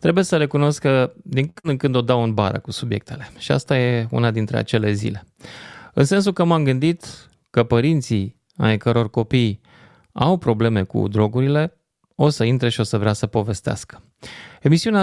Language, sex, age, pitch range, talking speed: Romanian, male, 20-39, 110-135 Hz, 180 wpm